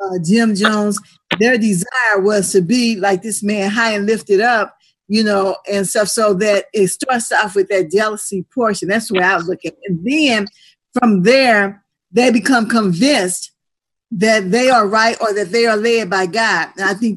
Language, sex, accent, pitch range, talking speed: English, female, American, 195-240 Hz, 190 wpm